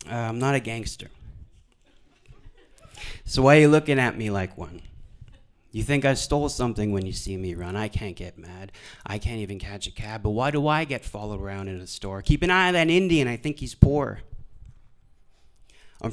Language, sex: English, male